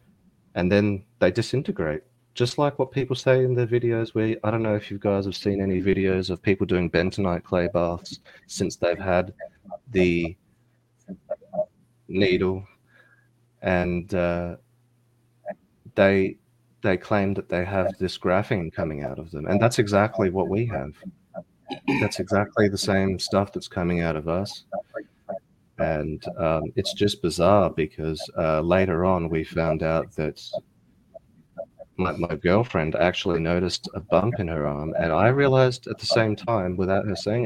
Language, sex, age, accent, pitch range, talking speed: English, male, 30-49, Australian, 85-110 Hz, 155 wpm